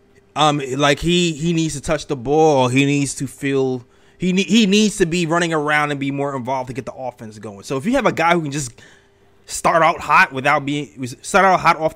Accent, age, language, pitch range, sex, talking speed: American, 20-39, English, 115-155 Hz, male, 250 wpm